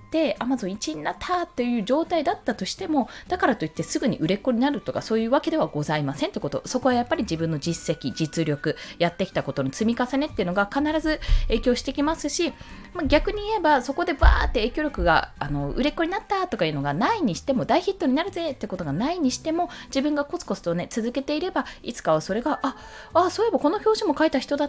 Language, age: Japanese, 20-39